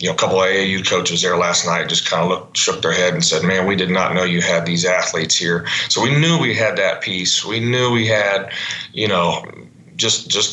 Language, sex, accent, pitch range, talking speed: English, male, American, 90-110 Hz, 250 wpm